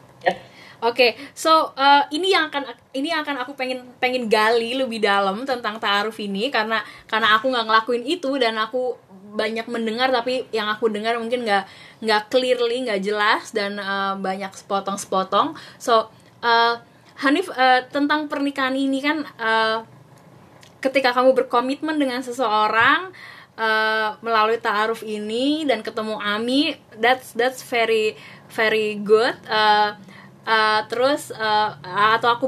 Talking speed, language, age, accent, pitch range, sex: 140 wpm, Indonesian, 10-29, native, 215-260 Hz, female